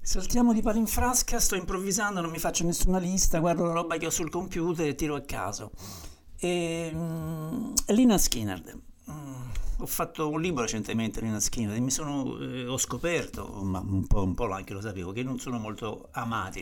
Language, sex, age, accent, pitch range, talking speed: Italian, male, 60-79, native, 105-140 Hz, 195 wpm